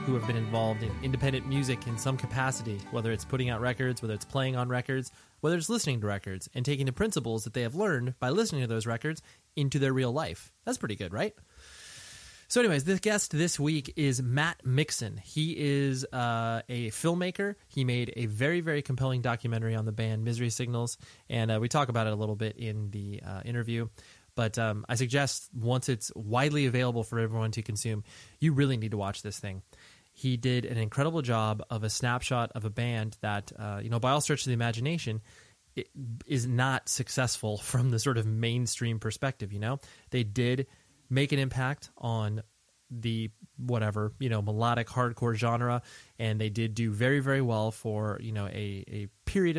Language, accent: English, American